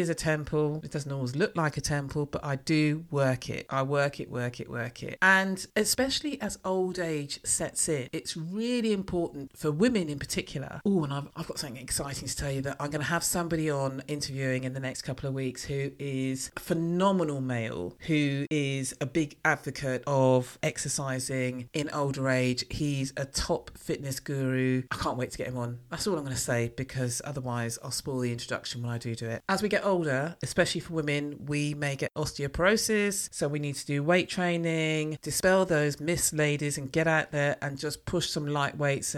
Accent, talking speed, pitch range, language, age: British, 210 wpm, 135-170 Hz, English, 40-59